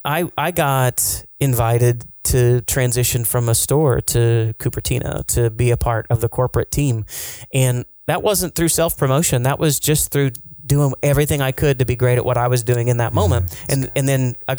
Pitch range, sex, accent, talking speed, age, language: 120-145 Hz, male, American, 195 wpm, 30-49, English